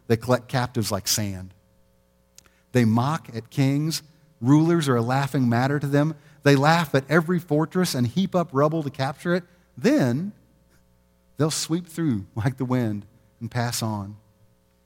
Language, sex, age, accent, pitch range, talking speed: English, male, 40-59, American, 95-145 Hz, 155 wpm